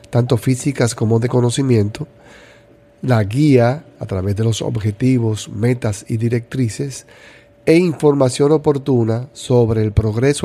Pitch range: 110-140 Hz